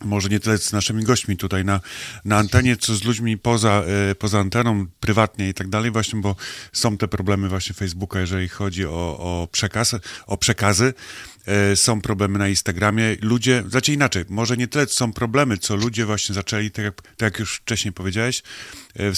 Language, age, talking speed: Polish, 30-49, 180 wpm